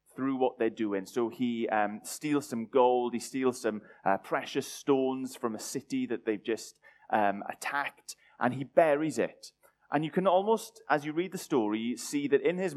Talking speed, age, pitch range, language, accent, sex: 195 wpm, 30-49, 110-140 Hz, English, British, male